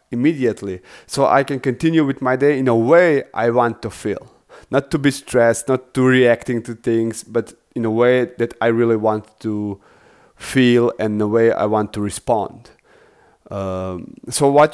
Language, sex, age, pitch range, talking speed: English, male, 30-49, 115-150 Hz, 180 wpm